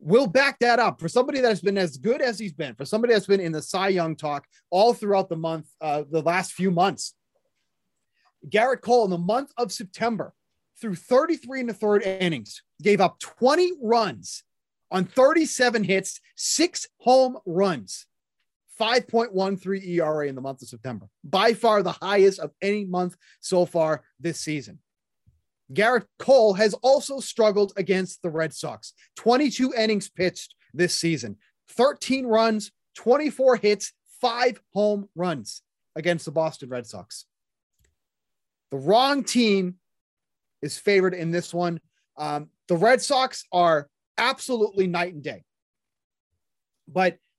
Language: English